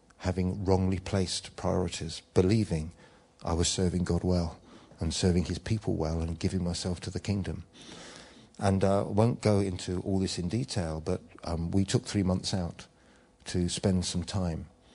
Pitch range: 85-100 Hz